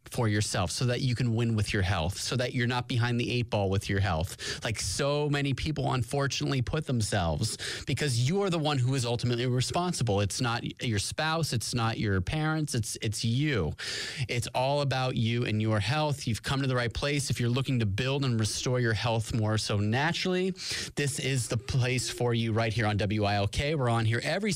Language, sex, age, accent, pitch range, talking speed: English, male, 30-49, American, 110-140 Hz, 215 wpm